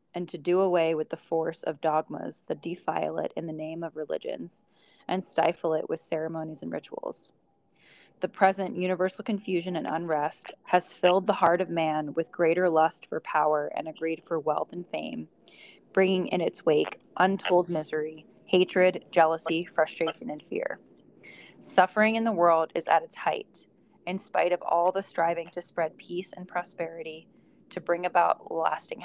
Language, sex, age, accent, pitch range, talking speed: English, female, 20-39, American, 160-185 Hz, 165 wpm